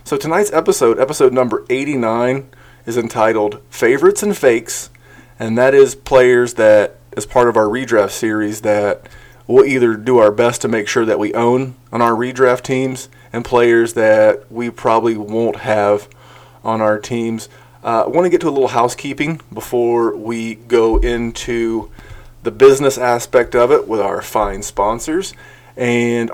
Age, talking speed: 30-49, 160 wpm